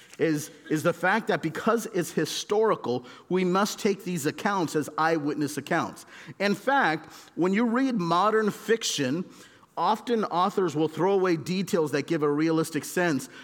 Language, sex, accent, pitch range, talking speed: English, male, American, 155-195 Hz, 150 wpm